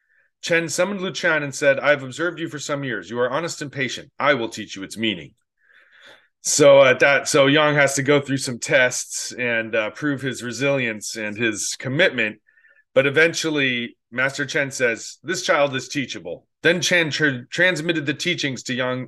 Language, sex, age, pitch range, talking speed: English, male, 30-49, 125-165 Hz, 180 wpm